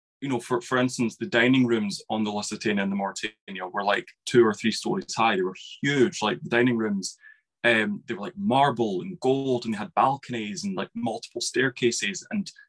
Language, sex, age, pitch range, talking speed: English, male, 20-39, 110-140 Hz, 210 wpm